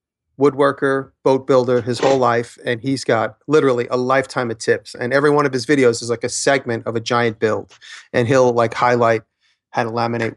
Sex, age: male, 30-49